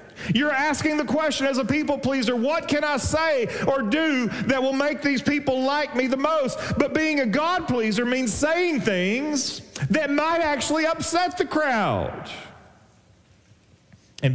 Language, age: English, 40-59